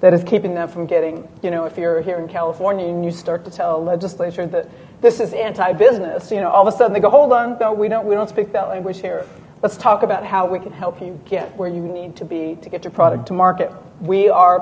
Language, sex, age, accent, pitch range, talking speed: English, female, 40-59, American, 180-225 Hz, 265 wpm